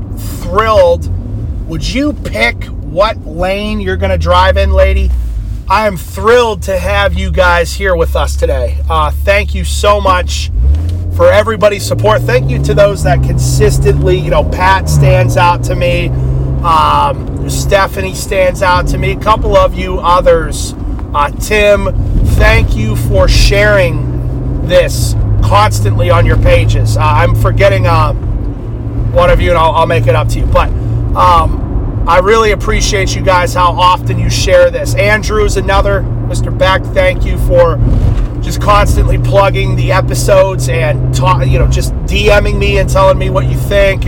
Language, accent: English, American